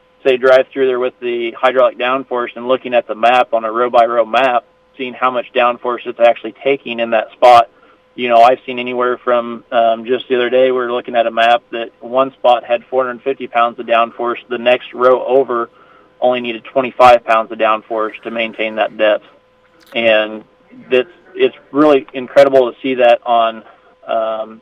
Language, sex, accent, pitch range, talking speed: English, male, American, 115-130 Hz, 190 wpm